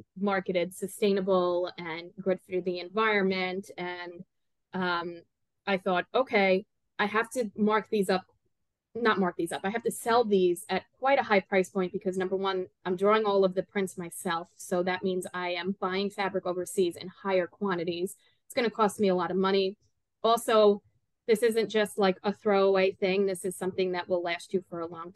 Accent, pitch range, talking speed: American, 180-205 Hz, 195 wpm